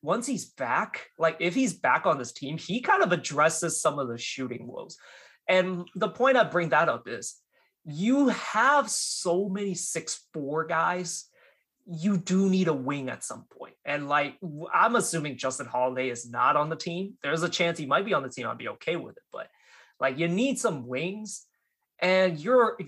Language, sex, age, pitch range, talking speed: English, male, 20-39, 135-190 Hz, 195 wpm